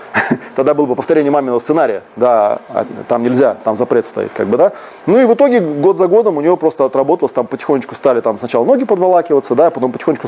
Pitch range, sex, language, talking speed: 135-205 Hz, male, Russian, 210 wpm